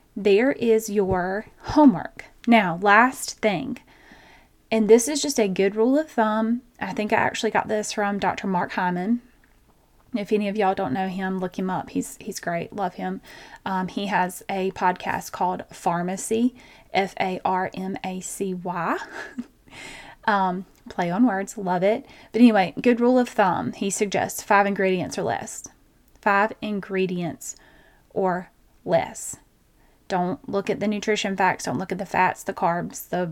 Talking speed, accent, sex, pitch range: 155 wpm, American, female, 185-220 Hz